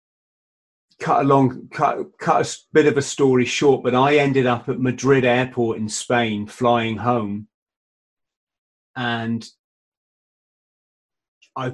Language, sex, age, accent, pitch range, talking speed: English, male, 30-49, British, 120-130 Hz, 120 wpm